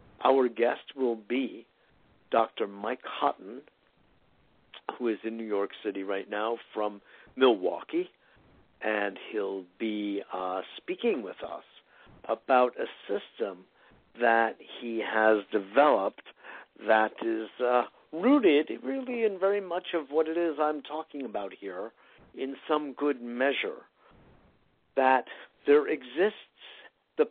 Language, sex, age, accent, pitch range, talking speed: English, male, 60-79, American, 115-165 Hz, 120 wpm